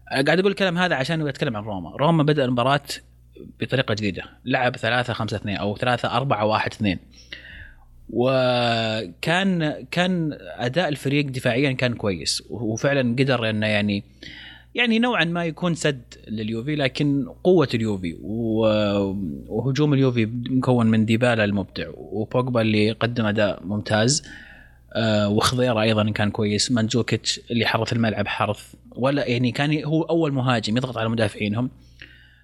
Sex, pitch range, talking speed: male, 105-145 Hz, 135 wpm